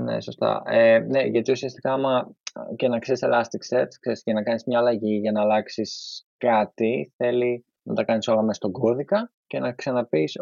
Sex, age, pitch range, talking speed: male, 20-39, 110-135 Hz, 180 wpm